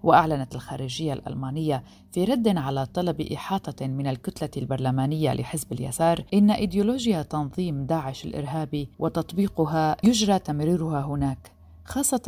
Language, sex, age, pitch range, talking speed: Arabic, female, 40-59, 140-180 Hz, 110 wpm